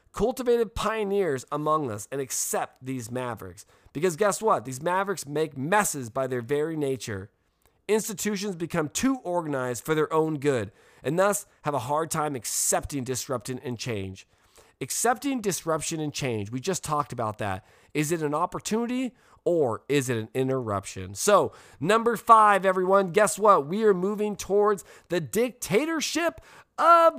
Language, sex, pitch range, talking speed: English, male, 130-205 Hz, 150 wpm